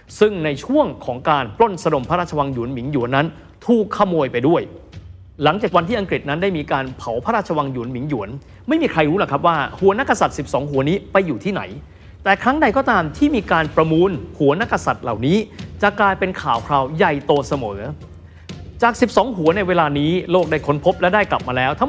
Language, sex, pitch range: Thai, male, 135-195 Hz